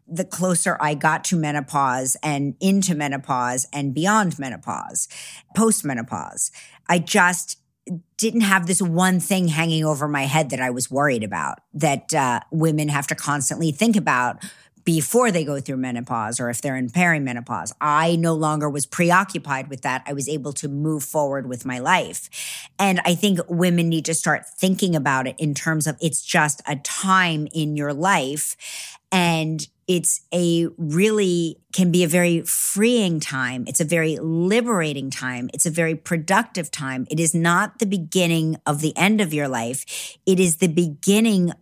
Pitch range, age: 145-180 Hz, 50-69